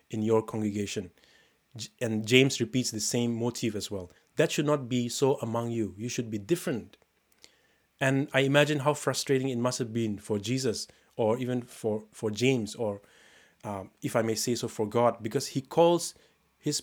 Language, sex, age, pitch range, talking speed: English, male, 30-49, 110-135 Hz, 180 wpm